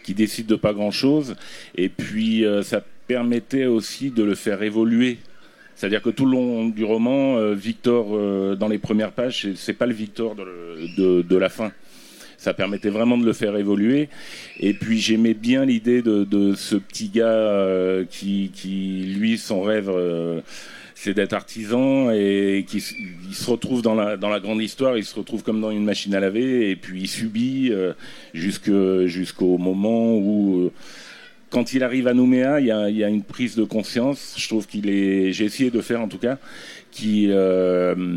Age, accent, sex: 40-59, French, male